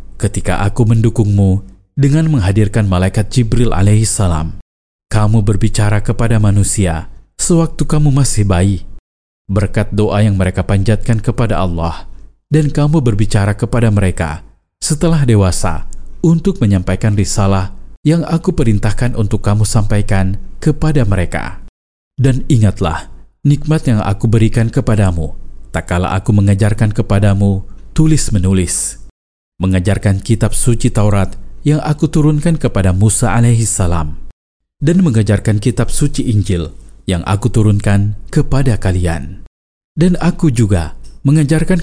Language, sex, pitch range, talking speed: Indonesian, male, 95-120 Hz, 110 wpm